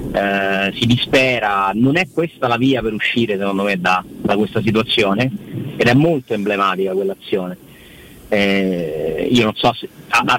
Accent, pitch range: native, 100-130 Hz